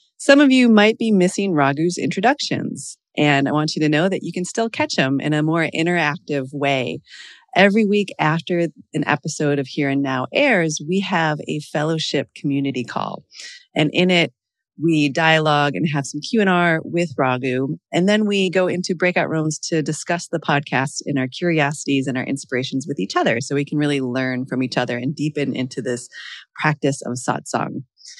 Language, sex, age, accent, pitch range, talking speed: English, female, 30-49, American, 140-190 Hz, 185 wpm